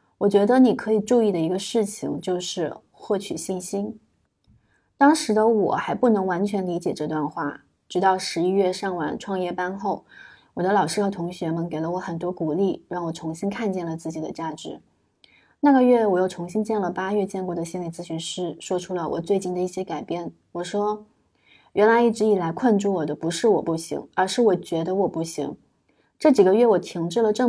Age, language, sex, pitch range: 20-39, Chinese, female, 175-215 Hz